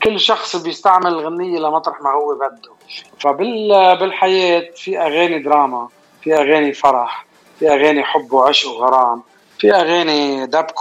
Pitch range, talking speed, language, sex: 145-185 Hz, 135 wpm, Arabic, male